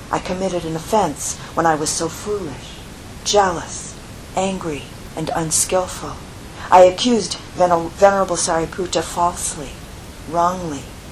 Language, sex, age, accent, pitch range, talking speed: English, female, 50-69, American, 150-185 Hz, 105 wpm